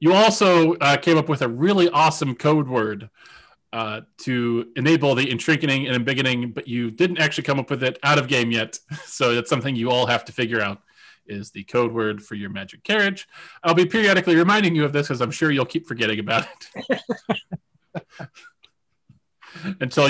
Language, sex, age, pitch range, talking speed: English, male, 30-49, 115-165 Hz, 190 wpm